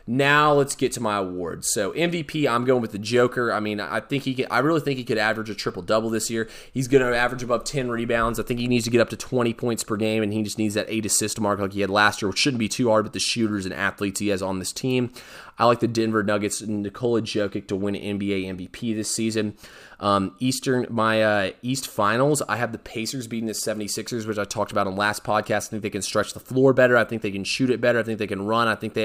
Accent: American